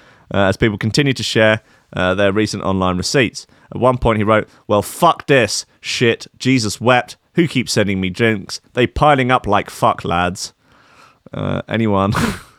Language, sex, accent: English, male, British